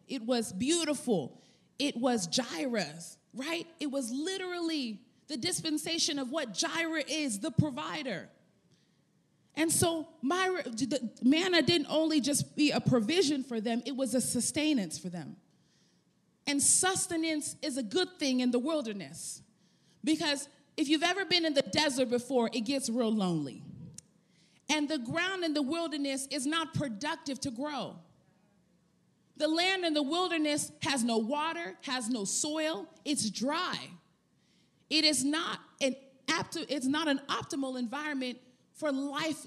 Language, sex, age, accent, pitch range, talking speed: English, female, 30-49, American, 240-315 Hz, 145 wpm